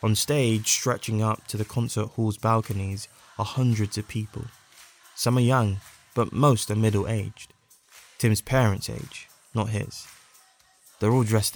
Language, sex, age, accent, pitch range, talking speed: English, male, 20-39, British, 100-120 Hz, 145 wpm